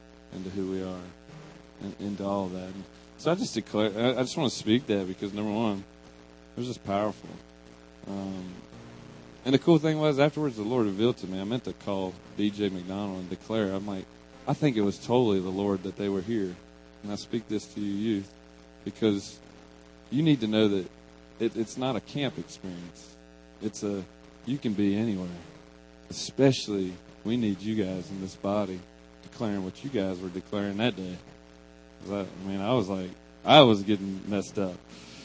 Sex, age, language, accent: male, 30-49, English, American